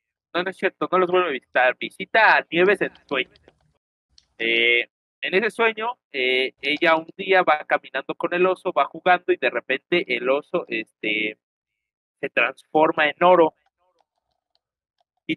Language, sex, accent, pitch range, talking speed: Spanish, male, Mexican, 140-210 Hz, 155 wpm